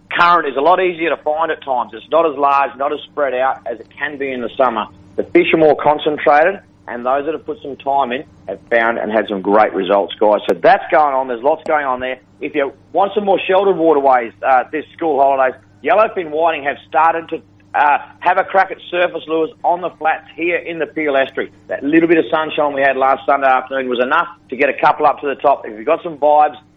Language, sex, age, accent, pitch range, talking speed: English, male, 40-59, Australian, 125-155 Hz, 245 wpm